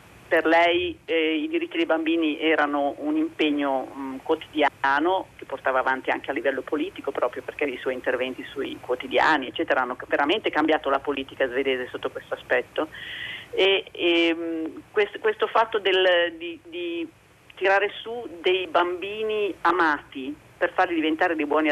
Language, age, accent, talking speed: Italian, 40-59, native, 150 wpm